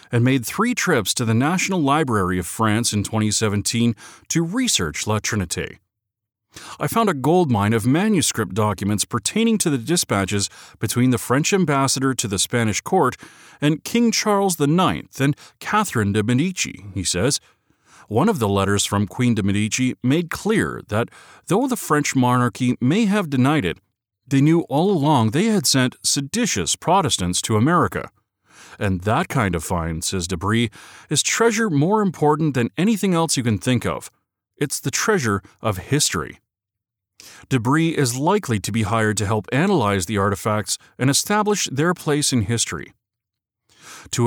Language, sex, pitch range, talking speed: English, male, 105-160 Hz, 155 wpm